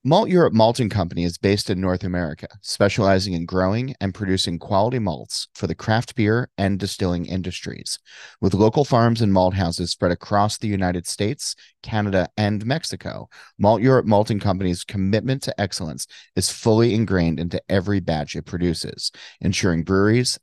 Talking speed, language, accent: 160 wpm, English, American